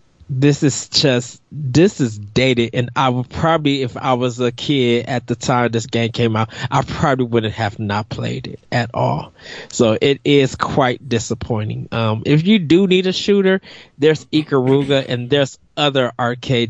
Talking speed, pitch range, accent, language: 175 wpm, 115-140 Hz, American, English